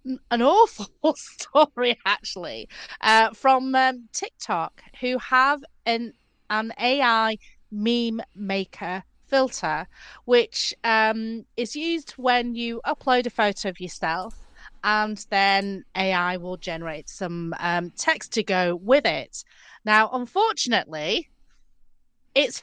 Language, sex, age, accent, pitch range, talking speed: English, female, 30-49, British, 195-260 Hz, 110 wpm